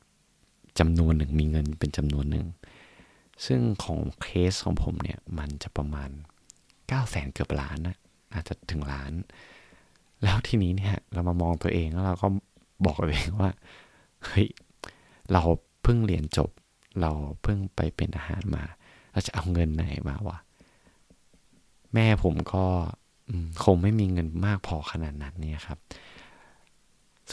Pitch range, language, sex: 80-105 Hz, Thai, male